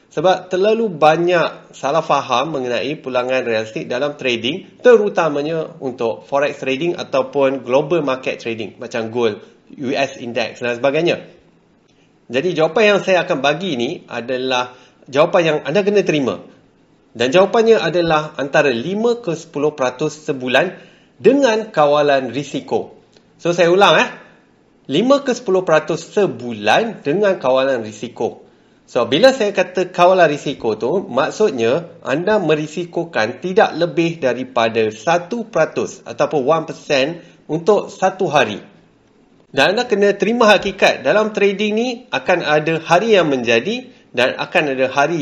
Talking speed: 125 wpm